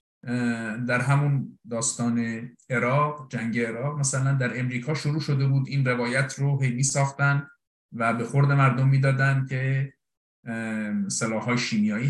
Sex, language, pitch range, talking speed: male, Persian, 120-145 Hz, 125 wpm